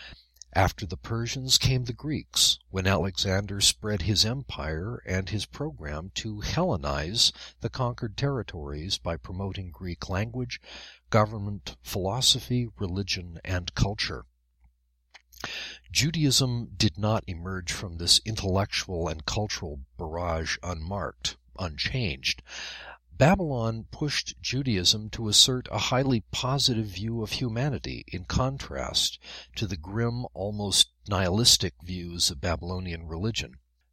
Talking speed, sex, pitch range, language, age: 110 wpm, male, 85-120 Hz, English, 60-79